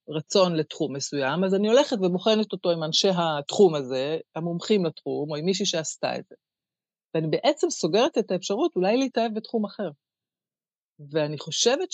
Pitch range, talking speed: 150-195 Hz, 155 wpm